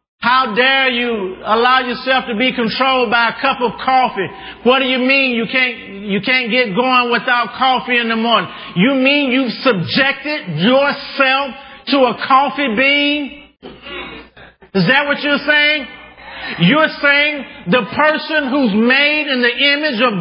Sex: male